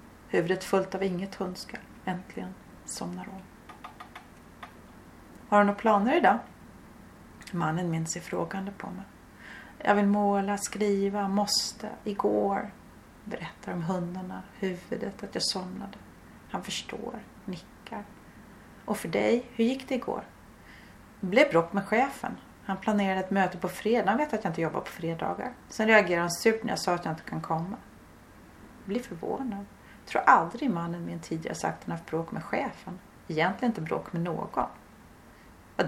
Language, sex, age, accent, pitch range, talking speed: Swedish, female, 30-49, native, 180-220 Hz, 155 wpm